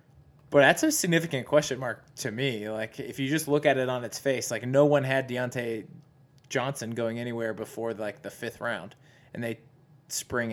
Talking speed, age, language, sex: 195 wpm, 20-39, English, male